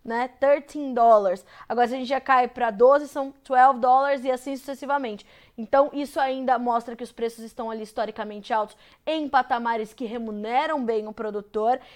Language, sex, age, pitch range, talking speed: Portuguese, female, 20-39, 235-285 Hz, 175 wpm